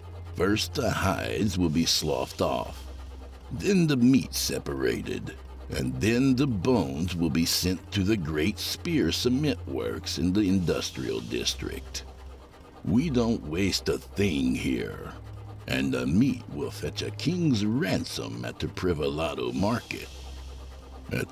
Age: 60-79